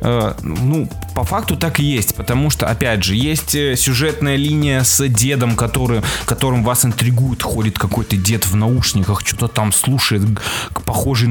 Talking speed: 150 wpm